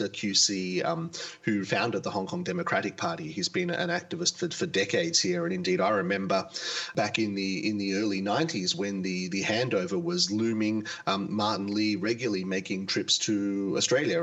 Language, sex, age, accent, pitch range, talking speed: English, male, 30-49, Australian, 105-175 Hz, 175 wpm